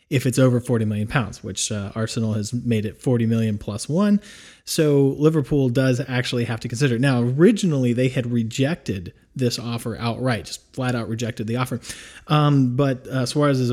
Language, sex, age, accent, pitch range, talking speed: English, male, 30-49, American, 115-135 Hz, 190 wpm